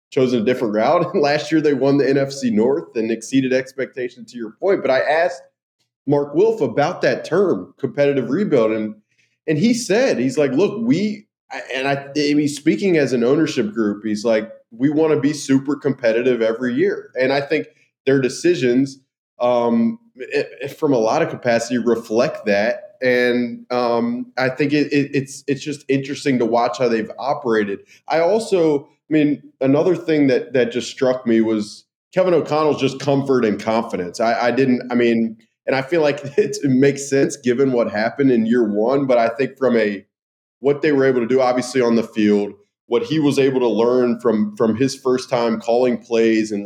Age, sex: 20-39, male